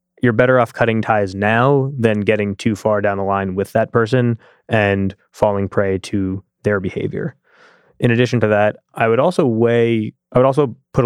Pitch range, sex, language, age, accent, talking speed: 100-120 Hz, male, English, 20-39, American, 185 wpm